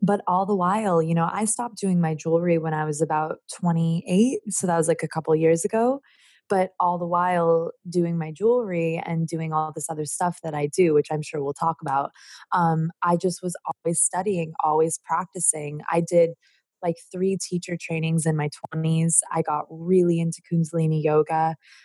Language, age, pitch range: English, 20-39, 155-180 Hz